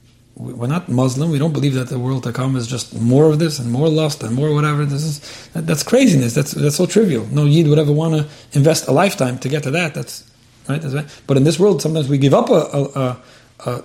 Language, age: English, 30-49